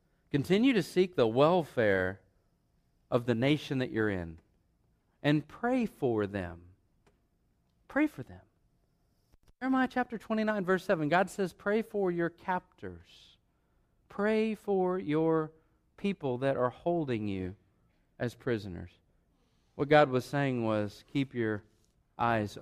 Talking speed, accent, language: 125 wpm, American, English